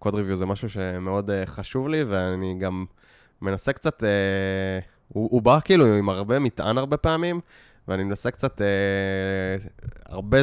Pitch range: 95-120 Hz